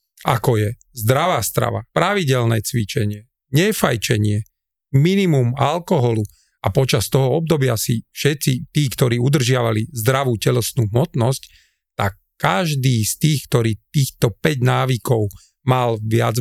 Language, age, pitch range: Slovak, 40-59, 110-140 Hz